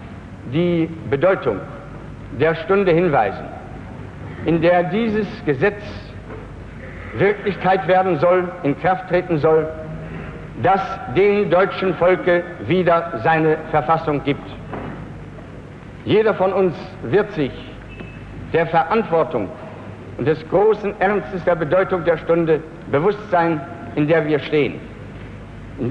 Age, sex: 70-89, male